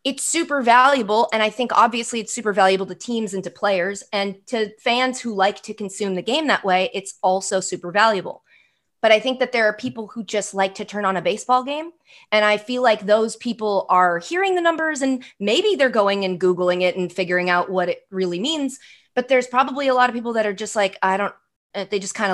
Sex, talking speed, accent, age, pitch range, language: female, 230 wpm, American, 30-49, 185-235 Hz, English